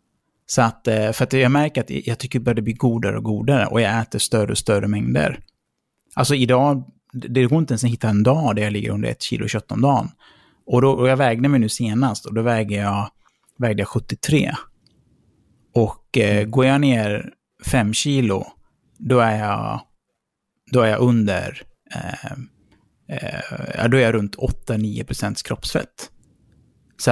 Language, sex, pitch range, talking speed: Swedish, male, 110-135 Hz, 175 wpm